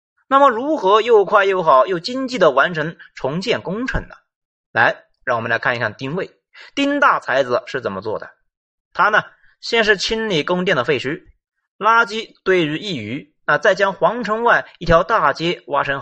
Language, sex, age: Chinese, male, 30-49